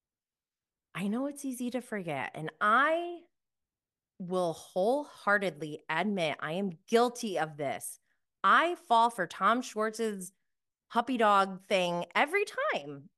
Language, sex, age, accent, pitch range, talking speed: English, female, 20-39, American, 165-250 Hz, 120 wpm